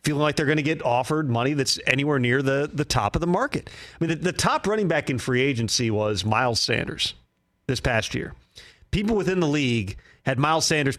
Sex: male